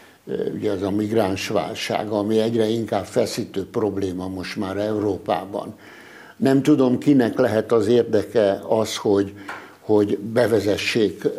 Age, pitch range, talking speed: 60-79, 105-130 Hz, 115 wpm